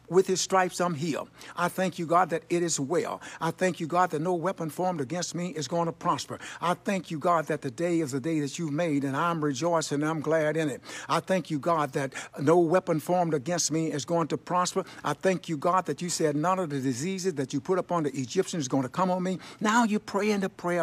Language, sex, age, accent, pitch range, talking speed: English, male, 60-79, American, 155-190 Hz, 260 wpm